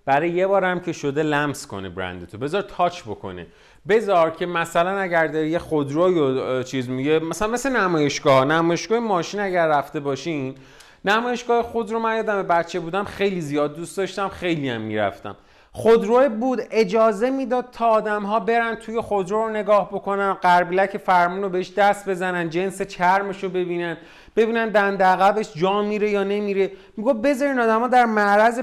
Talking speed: 155 wpm